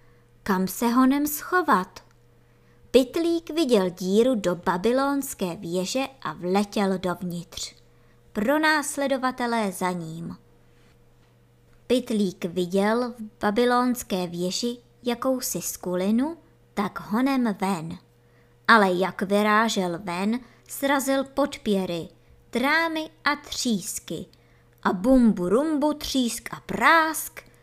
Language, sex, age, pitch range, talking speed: Czech, male, 20-39, 180-250 Hz, 90 wpm